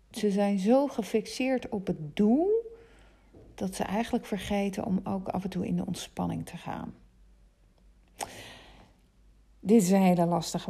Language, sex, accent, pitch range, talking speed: Dutch, female, Dutch, 180-225 Hz, 145 wpm